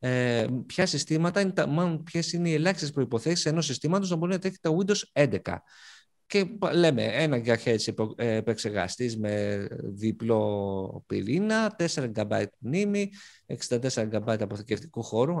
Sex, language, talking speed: male, Greek, 125 wpm